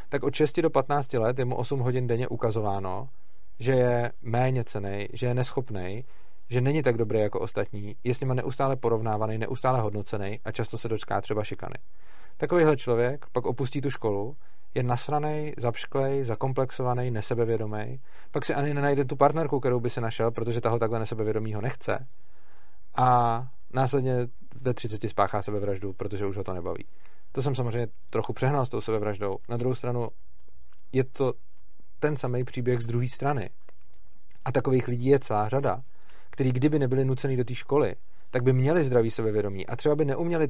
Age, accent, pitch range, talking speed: 30-49, native, 110-135 Hz, 175 wpm